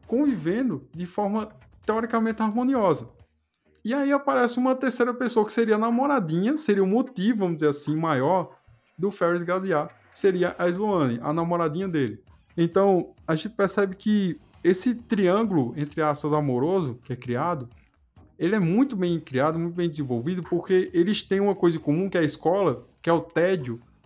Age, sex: 20-39, male